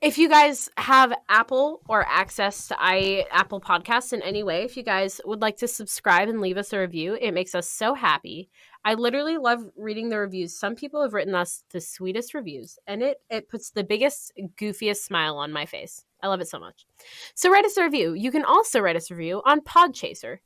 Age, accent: 20-39, American